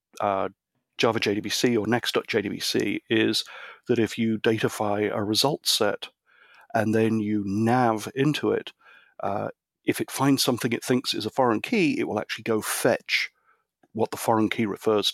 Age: 40-59